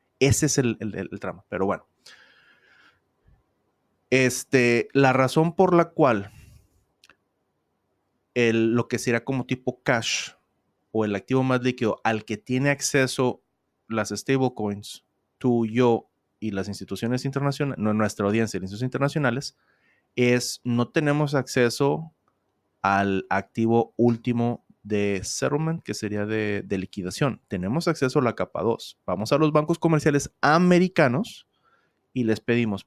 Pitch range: 105-135 Hz